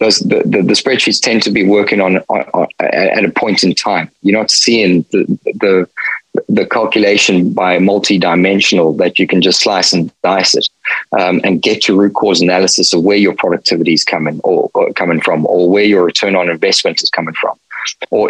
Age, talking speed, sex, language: 20-39, 200 wpm, male, English